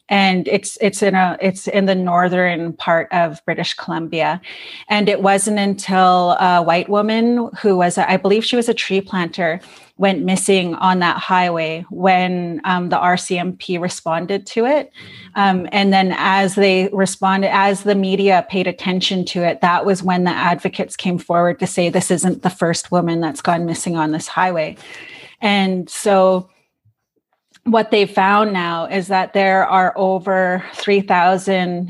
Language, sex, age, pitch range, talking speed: English, female, 30-49, 180-195 Hz, 165 wpm